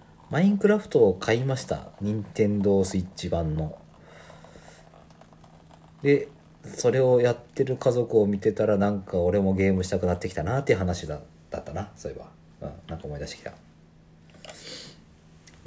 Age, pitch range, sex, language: 40-59, 80-110 Hz, male, Japanese